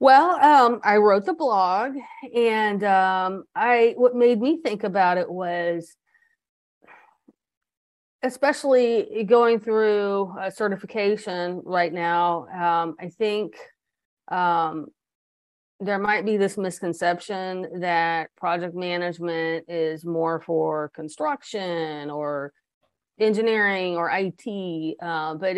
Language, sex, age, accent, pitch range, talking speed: English, female, 30-49, American, 170-220 Hz, 105 wpm